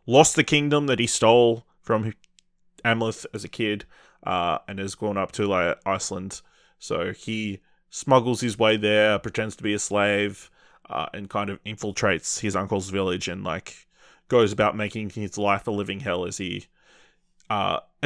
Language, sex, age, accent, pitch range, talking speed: English, male, 20-39, Australian, 100-120 Hz, 170 wpm